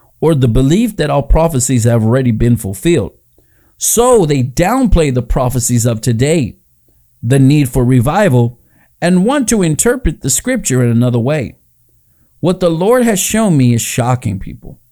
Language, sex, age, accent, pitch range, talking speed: English, male, 50-69, American, 120-170 Hz, 155 wpm